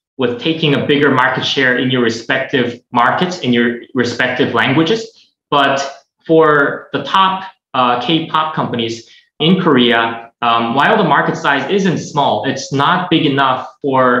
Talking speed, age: 145 wpm, 20-39